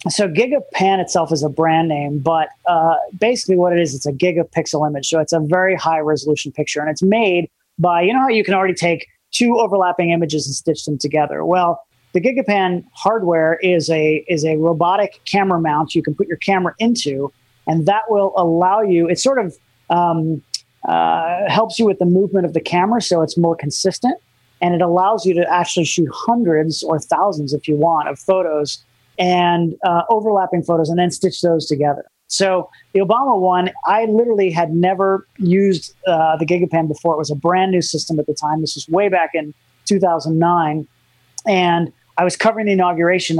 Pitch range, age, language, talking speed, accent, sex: 160-190 Hz, 30-49, English, 190 wpm, American, male